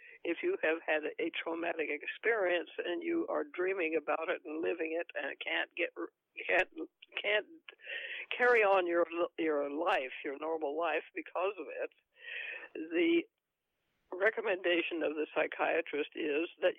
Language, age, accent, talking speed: English, 60-79, American, 140 wpm